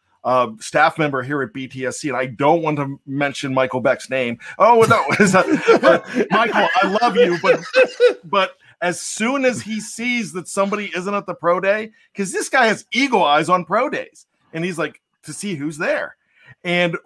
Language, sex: English, male